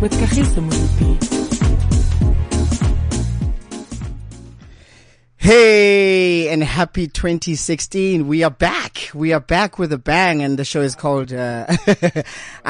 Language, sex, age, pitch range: English, male, 30-49, 120-150 Hz